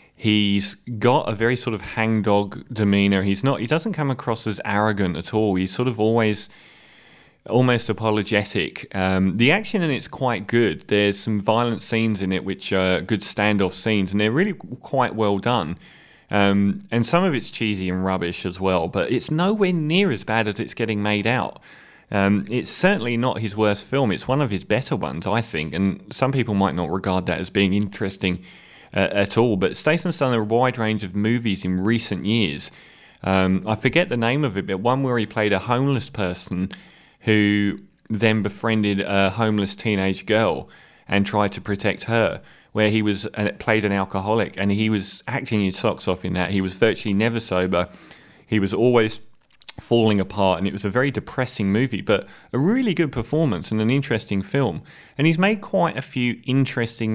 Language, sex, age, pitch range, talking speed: English, male, 30-49, 100-125 Hz, 195 wpm